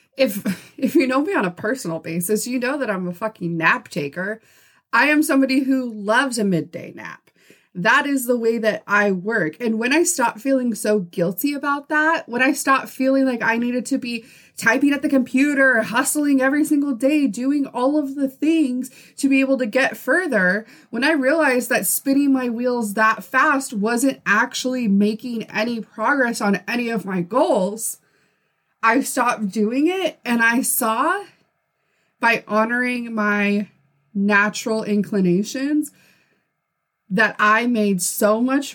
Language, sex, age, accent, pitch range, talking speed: English, female, 20-39, American, 210-275 Hz, 165 wpm